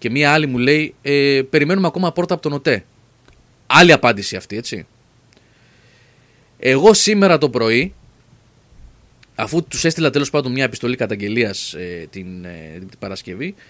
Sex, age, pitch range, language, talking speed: male, 30-49, 115-175 Hz, Greek, 145 wpm